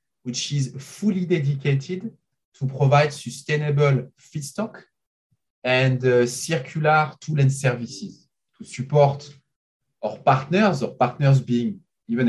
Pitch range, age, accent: 120-155 Hz, 30-49, French